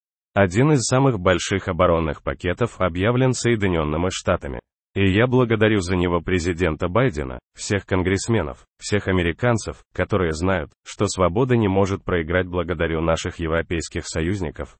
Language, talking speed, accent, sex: Russian, 125 wpm, native, male